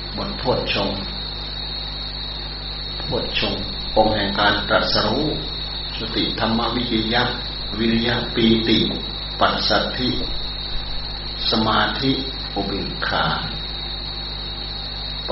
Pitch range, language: 100-115 Hz, Thai